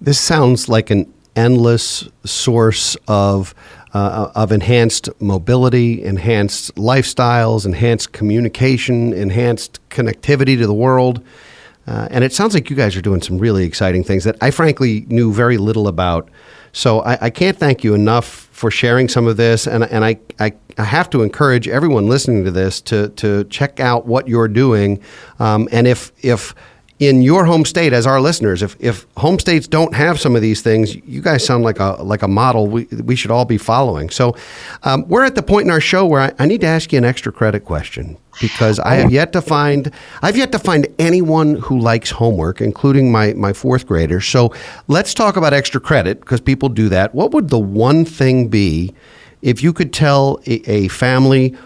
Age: 40-59